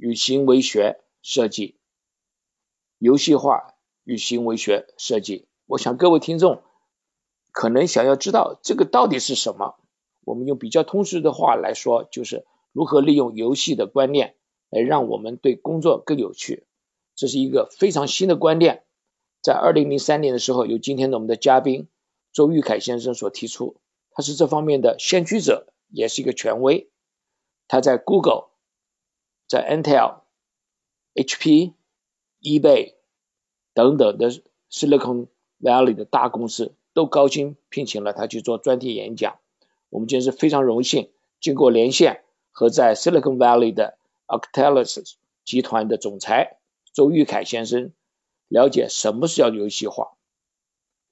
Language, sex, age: Chinese, male, 50-69